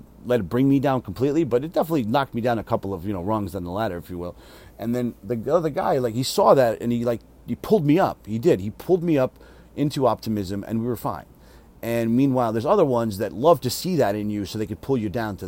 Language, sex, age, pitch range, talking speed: English, male, 40-59, 100-145 Hz, 275 wpm